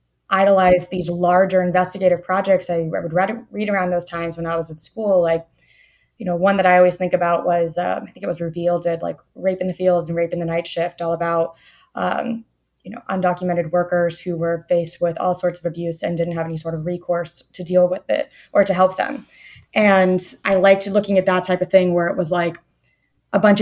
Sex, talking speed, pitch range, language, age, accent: female, 230 wpm, 175-200 Hz, English, 20-39, American